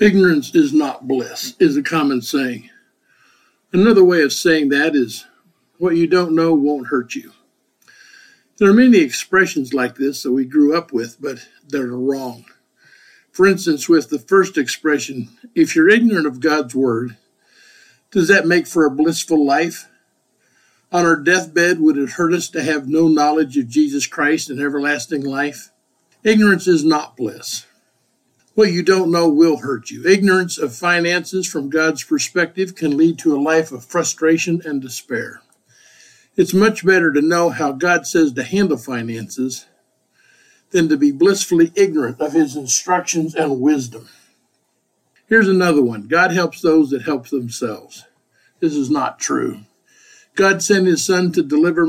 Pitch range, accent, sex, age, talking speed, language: 145-195 Hz, American, male, 50-69, 160 wpm, English